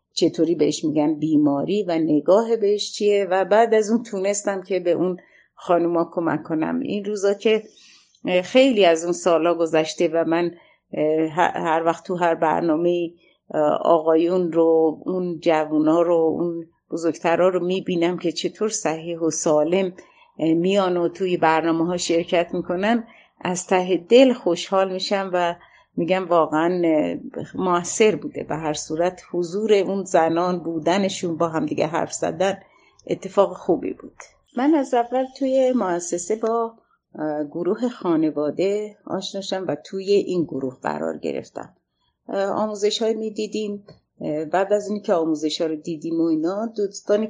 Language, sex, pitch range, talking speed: Persian, female, 160-200 Hz, 140 wpm